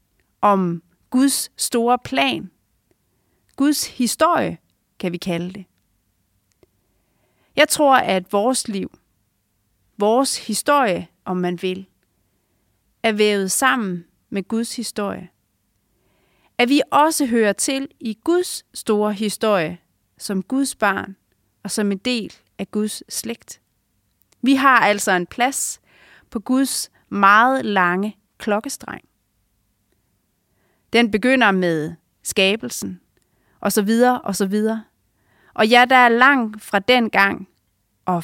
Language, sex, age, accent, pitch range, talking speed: English, female, 30-49, Danish, 170-245 Hz, 120 wpm